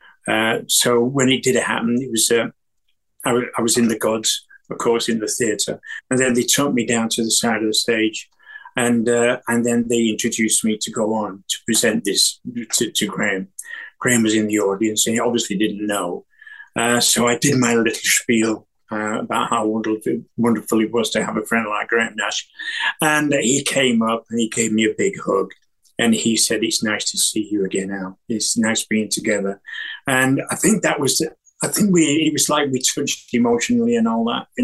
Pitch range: 115-140 Hz